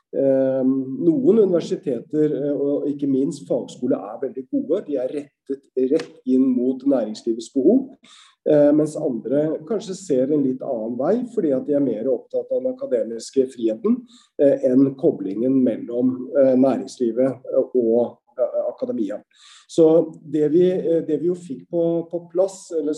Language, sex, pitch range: English, male, 135-190 Hz